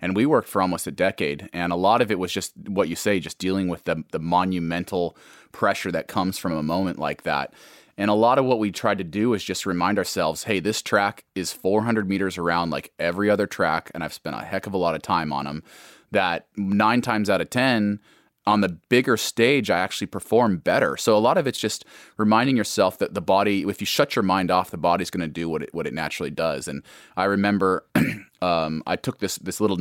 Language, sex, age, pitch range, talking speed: English, male, 30-49, 85-105 Hz, 235 wpm